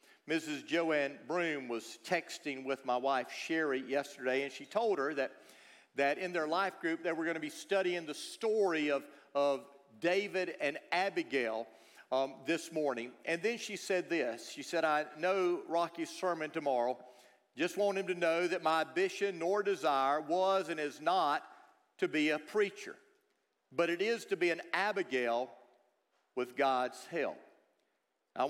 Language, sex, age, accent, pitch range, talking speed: English, male, 50-69, American, 140-185 Hz, 160 wpm